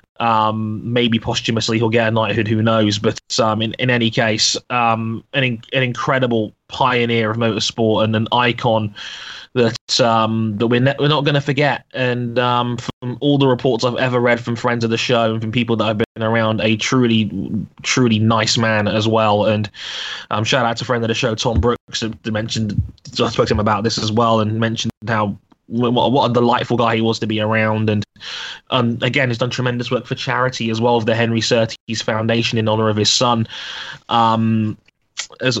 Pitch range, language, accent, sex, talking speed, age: 110-120 Hz, English, British, male, 195 wpm, 20-39